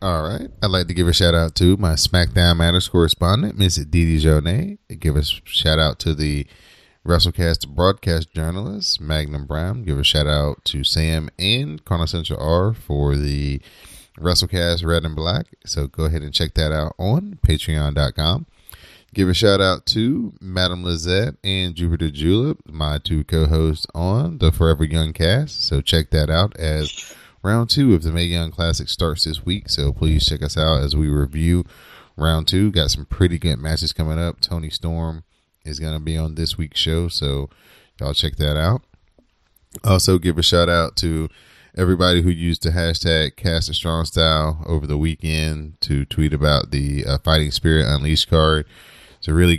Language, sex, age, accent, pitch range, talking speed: English, male, 30-49, American, 75-90 Hz, 175 wpm